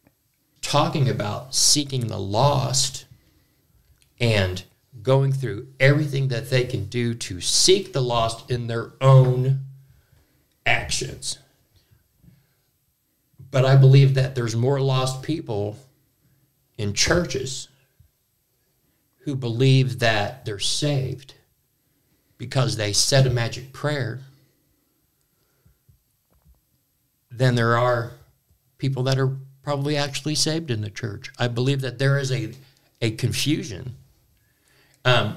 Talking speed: 105 wpm